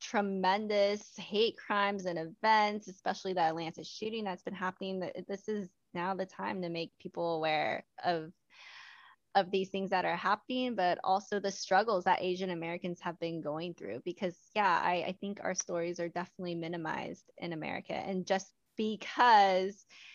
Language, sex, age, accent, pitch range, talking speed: English, female, 20-39, American, 180-210 Hz, 160 wpm